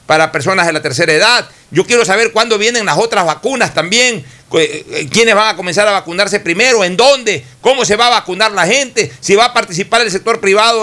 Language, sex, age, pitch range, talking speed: Spanish, male, 60-79, 150-220 Hz, 210 wpm